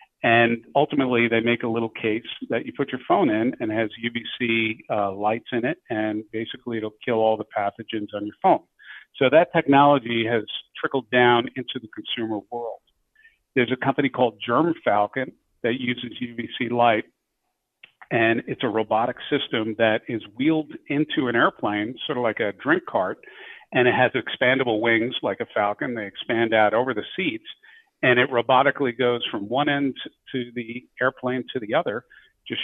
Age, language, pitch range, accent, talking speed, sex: 50-69, English, 115-130 Hz, American, 175 wpm, male